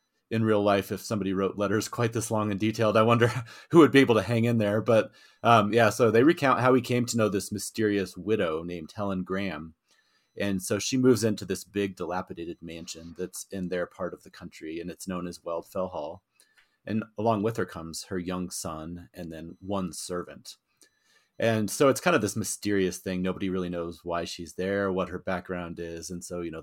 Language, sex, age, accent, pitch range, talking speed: English, male, 30-49, American, 90-110 Hz, 215 wpm